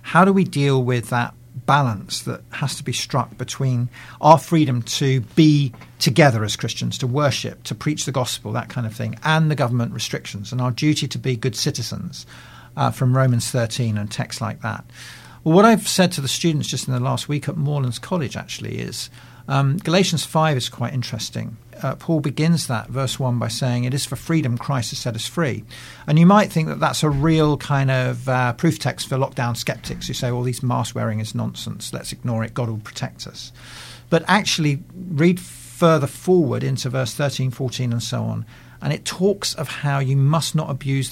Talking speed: 205 wpm